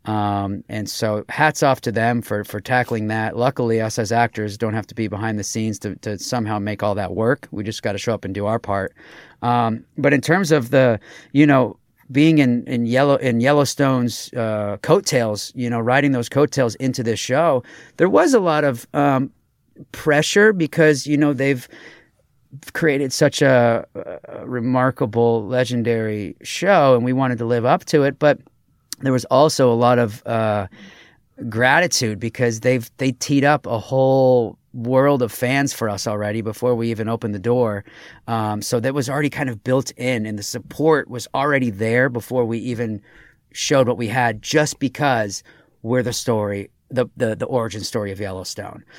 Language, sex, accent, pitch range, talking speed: English, male, American, 110-140 Hz, 185 wpm